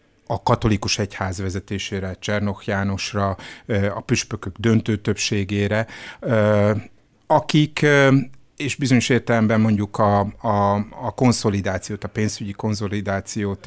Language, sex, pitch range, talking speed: Hungarian, male, 105-130 Hz, 90 wpm